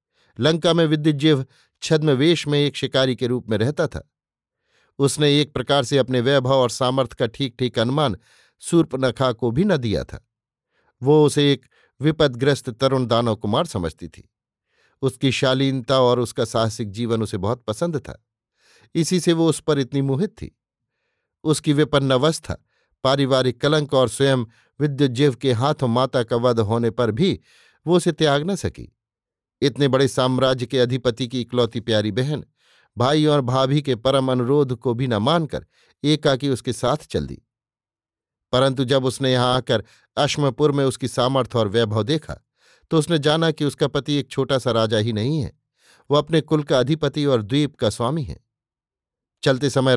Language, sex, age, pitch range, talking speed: Hindi, male, 50-69, 125-150 Hz, 170 wpm